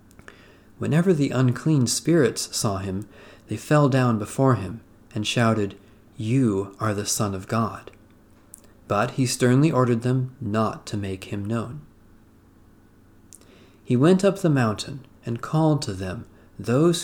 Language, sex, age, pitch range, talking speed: English, male, 40-59, 100-130 Hz, 135 wpm